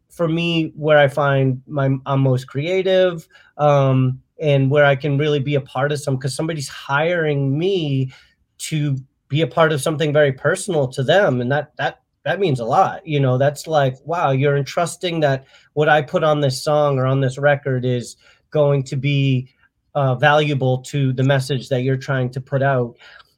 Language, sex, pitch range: English, male, 130-160 Hz